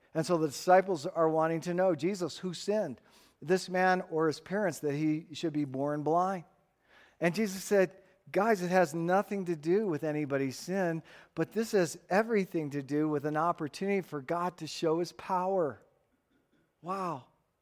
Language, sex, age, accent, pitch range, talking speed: English, male, 50-69, American, 140-190 Hz, 170 wpm